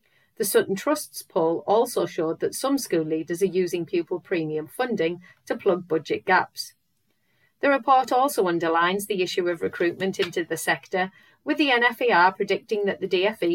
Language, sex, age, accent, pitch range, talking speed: English, female, 40-59, British, 175-240 Hz, 165 wpm